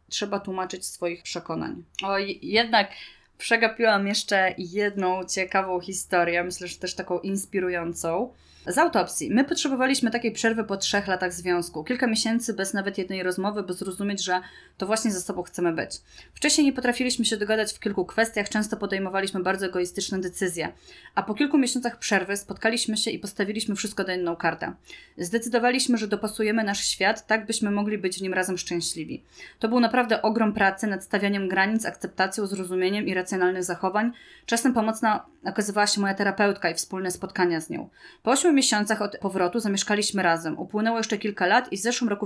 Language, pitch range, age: Polish, 190-225 Hz, 20-39